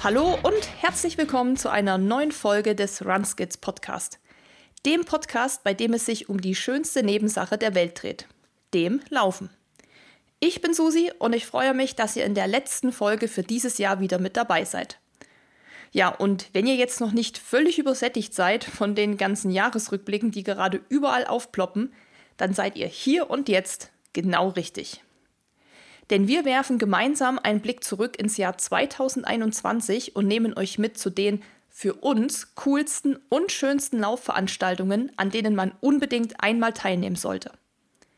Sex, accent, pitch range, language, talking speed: female, German, 200-260 Hz, German, 155 wpm